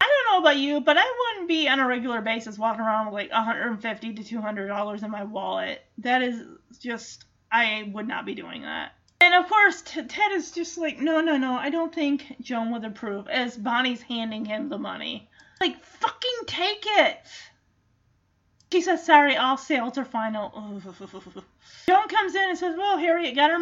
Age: 30-49